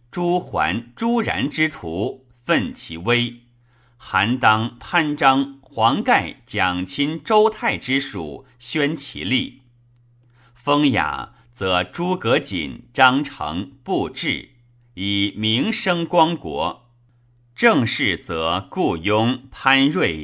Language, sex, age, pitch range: Chinese, male, 50-69, 110-140 Hz